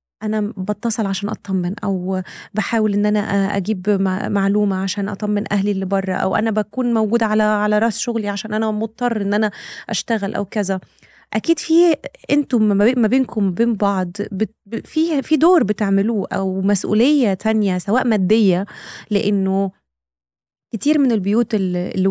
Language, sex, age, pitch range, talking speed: Arabic, female, 20-39, 190-220 Hz, 140 wpm